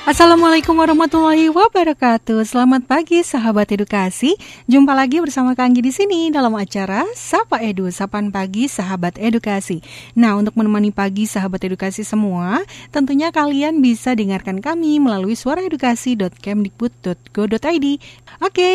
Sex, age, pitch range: female, 30-49, 200-275 Hz